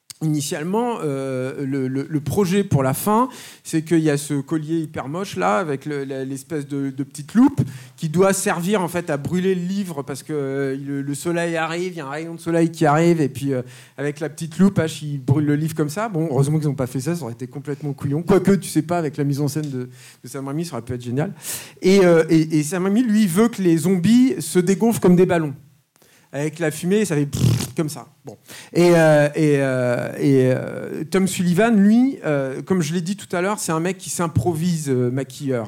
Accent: French